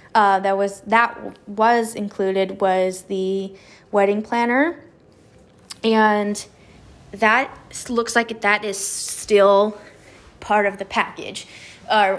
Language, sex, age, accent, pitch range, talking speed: English, female, 20-39, American, 190-225 Hz, 110 wpm